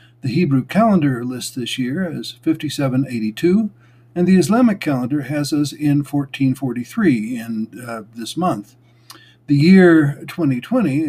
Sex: male